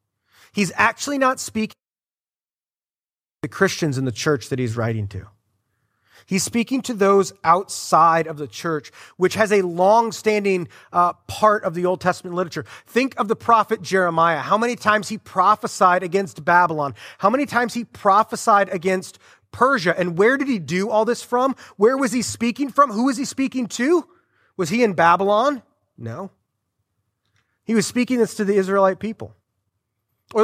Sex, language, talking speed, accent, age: male, English, 165 wpm, American, 30-49